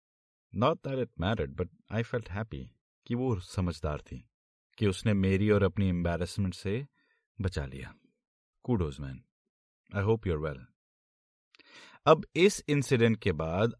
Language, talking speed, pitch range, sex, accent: Hindi, 110 wpm, 85-120 Hz, male, native